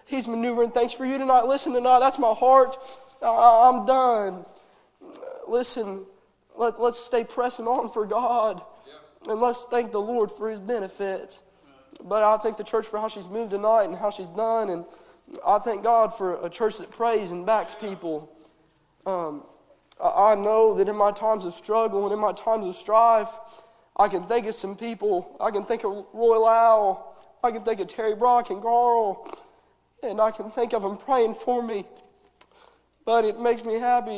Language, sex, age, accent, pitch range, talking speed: English, male, 20-39, American, 210-240 Hz, 180 wpm